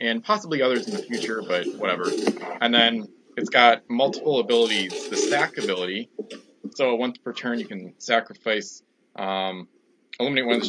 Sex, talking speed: male, 165 wpm